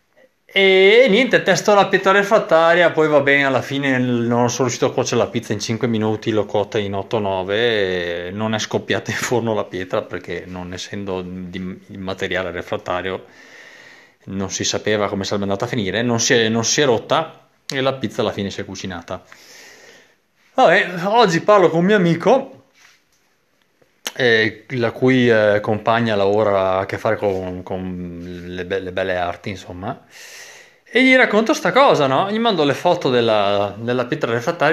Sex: male